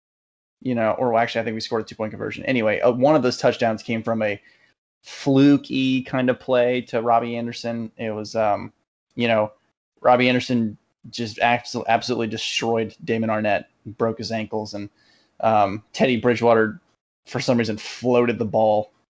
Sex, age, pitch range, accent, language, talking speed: male, 20-39, 110-120 Hz, American, English, 170 wpm